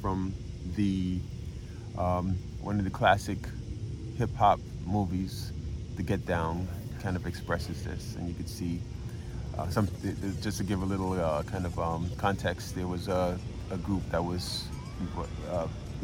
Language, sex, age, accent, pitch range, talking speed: English, male, 30-49, American, 90-110 Hz, 155 wpm